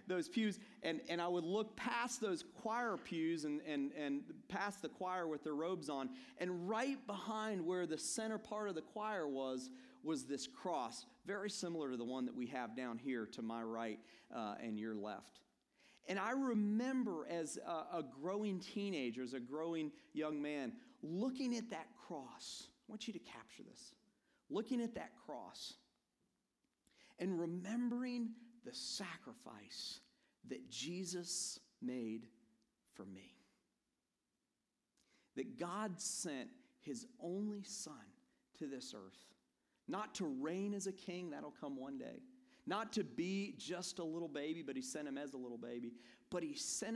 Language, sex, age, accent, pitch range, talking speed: English, male, 40-59, American, 155-240 Hz, 160 wpm